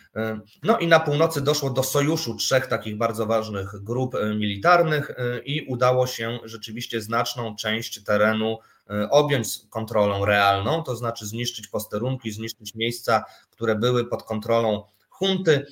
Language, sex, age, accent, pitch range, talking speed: Polish, male, 20-39, native, 110-135 Hz, 130 wpm